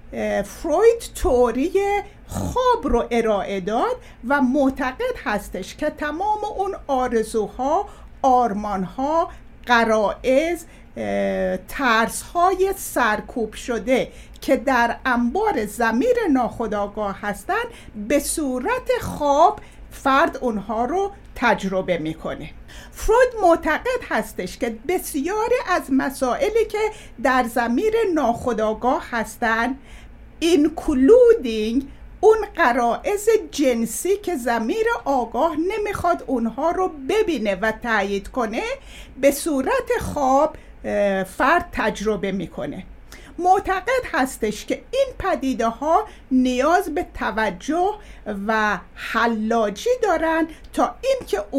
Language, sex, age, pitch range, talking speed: Persian, female, 60-79, 230-370 Hz, 95 wpm